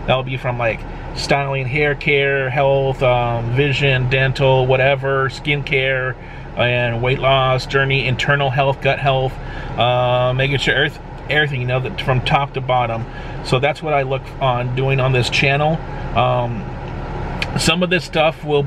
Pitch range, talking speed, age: 125-140 Hz, 165 wpm, 30-49